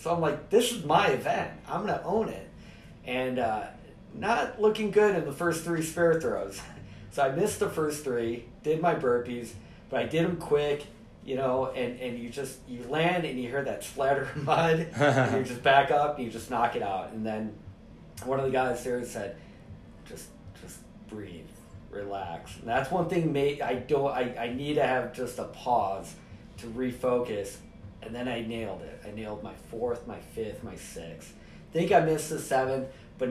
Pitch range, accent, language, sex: 115-150 Hz, American, English, male